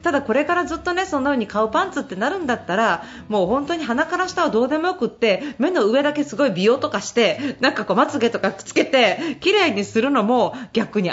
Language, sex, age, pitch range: Japanese, female, 40-59, 225-345 Hz